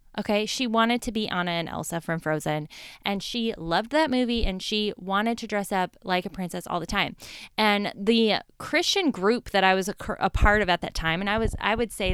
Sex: female